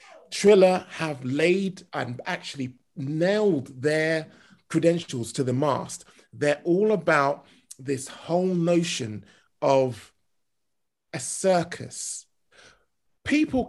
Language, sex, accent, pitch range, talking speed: English, male, British, 130-175 Hz, 90 wpm